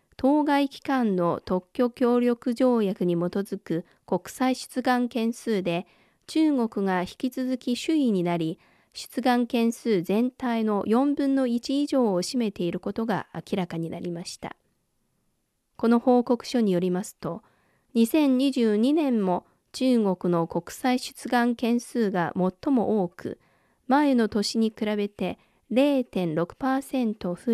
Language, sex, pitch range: Japanese, female, 190-255 Hz